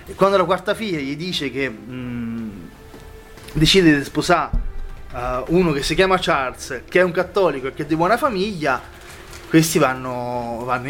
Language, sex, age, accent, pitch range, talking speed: Italian, male, 20-39, native, 130-165 Hz, 165 wpm